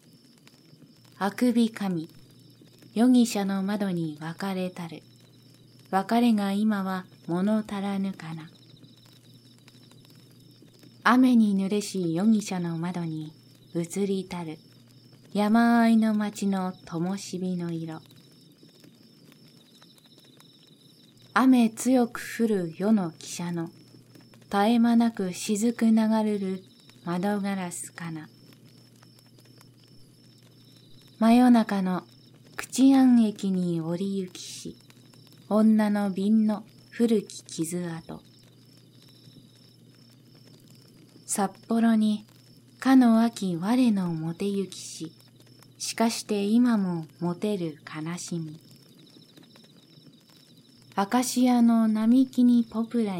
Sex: female